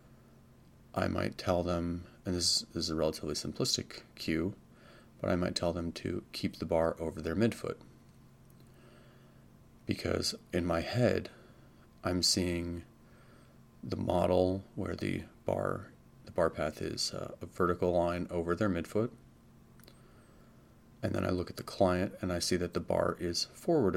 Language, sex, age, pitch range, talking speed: English, male, 30-49, 85-110 Hz, 145 wpm